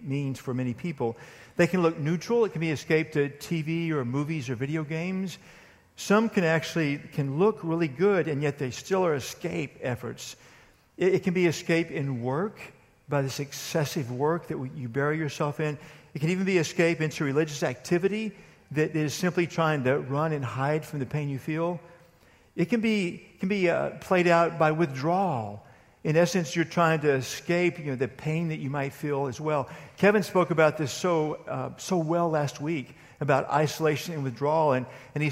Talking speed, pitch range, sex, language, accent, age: 190 wpm, 140-170 Hz, male, English, American, 50-69